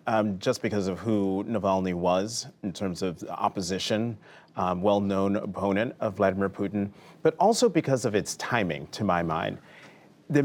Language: English